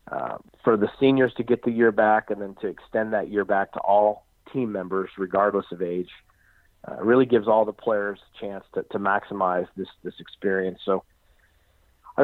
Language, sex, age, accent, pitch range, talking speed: English, male, 50-69, American, 95-110 Hz, 190 wpm